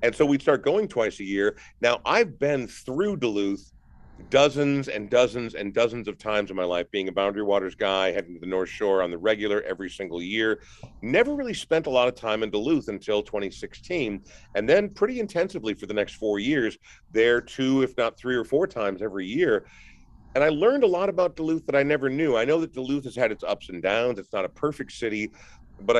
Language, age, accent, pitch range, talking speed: English, 40-59, American, 105-145 Hz, 225 wpm